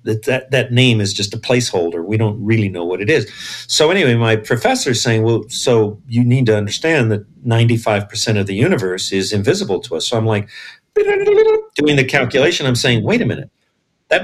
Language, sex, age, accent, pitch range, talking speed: English, male, 50-69, American, 110-135 Hz, 205 wpm